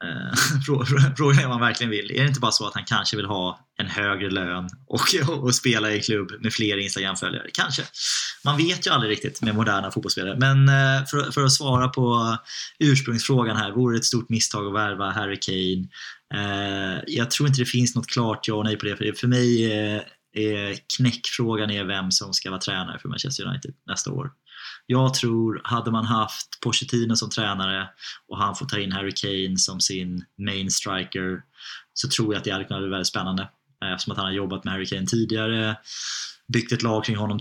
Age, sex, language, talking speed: 20-39, male, Swedish, 195 wpm